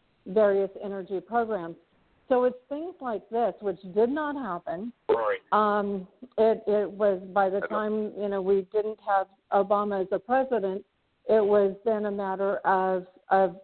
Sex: female